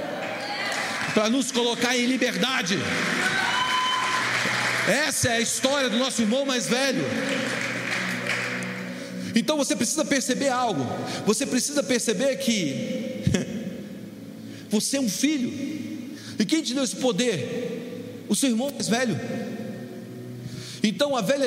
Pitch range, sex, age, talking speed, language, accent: 215-260 Hz, male, 40-59, 115 wpm, Portuguese, Brazilian